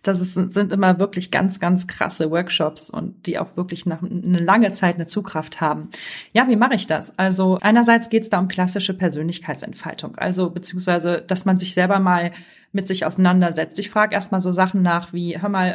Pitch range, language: 180-210 Hz, German